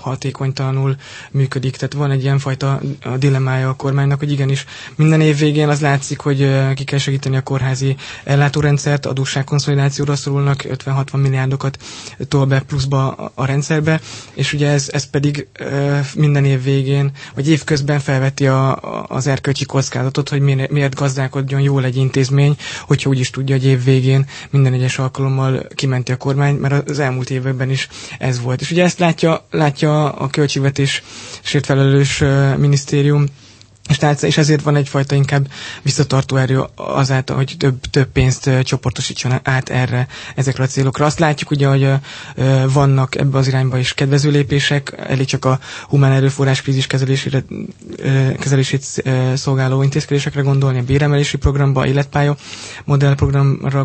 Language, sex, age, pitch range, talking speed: Hungarian, male, 20-39, 135-145 Hz, 145 wpm